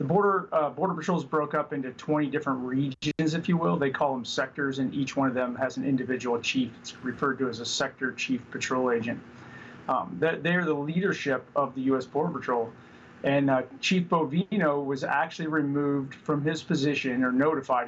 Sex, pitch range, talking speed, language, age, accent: male, 130-155 Hz, 190 wpm, English, 30-49, American